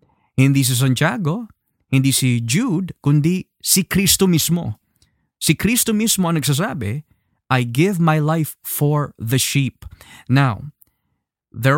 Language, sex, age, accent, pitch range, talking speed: Filipino, male, 20-39, native, 125-170 Hz, 120 wpm